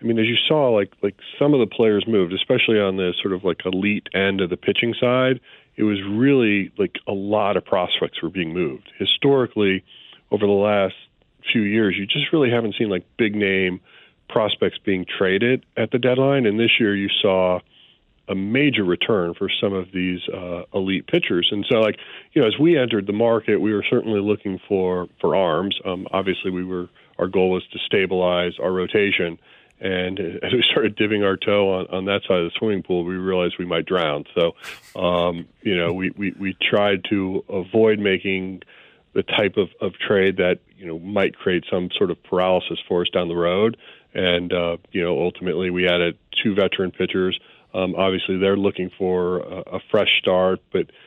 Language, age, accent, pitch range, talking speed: English, 40-59, American, 90-105 Hz, 195 wpm